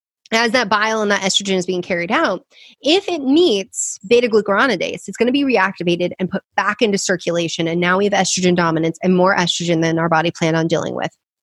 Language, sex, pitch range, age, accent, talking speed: English, female, 185-255 Hz, 30-49, American, 210 wpm